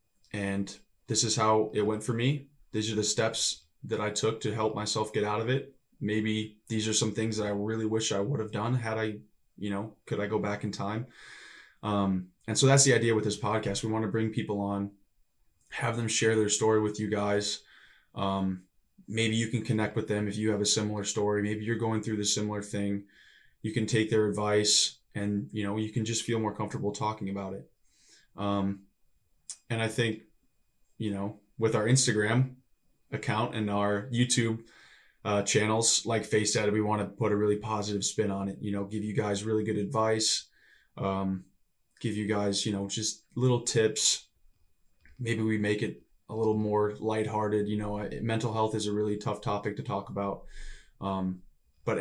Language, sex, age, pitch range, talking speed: English, male, 20-39, 105-110 Hz, 200 wpm